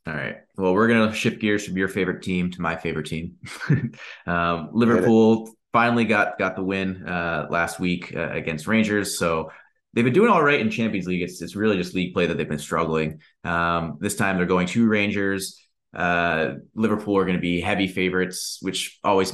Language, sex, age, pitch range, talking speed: English, male, 30-49, 85-105 Hz, 200 wpm